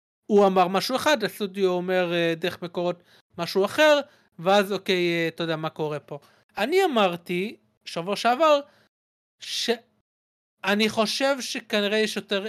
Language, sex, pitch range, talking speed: Hebrew, male, 170-220 Hz, 125 wpm